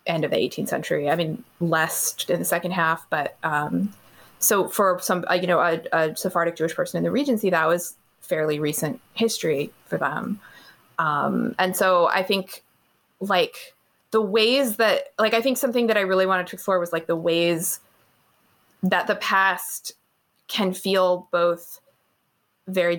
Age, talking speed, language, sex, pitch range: 20-39, 170 wpm, English, female, 170-205 Hz